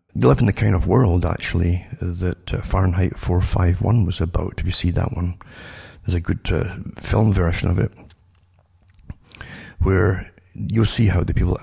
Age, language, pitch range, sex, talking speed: 50-69, English, 85-105 Hz, male, 180 wpm